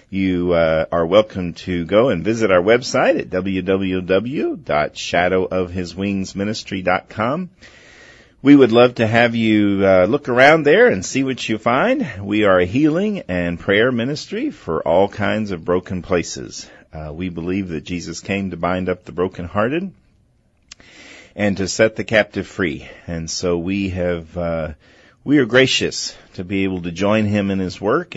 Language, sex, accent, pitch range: English, male, American, 85-110 Hz